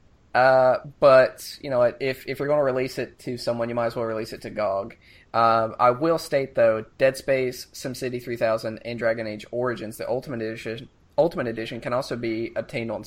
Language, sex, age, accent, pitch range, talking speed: English, male, 20-39, American, 115-140 Hz, 200 wpm